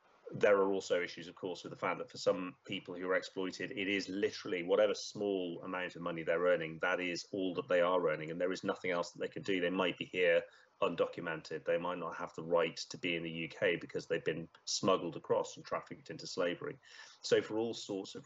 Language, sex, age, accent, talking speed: English, male, 30-49, British, 235 wpm